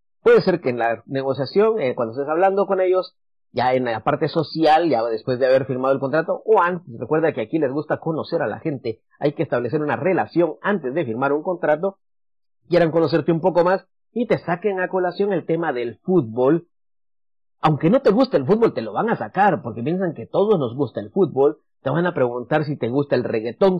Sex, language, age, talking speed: male, English, 40-59, 220 wpm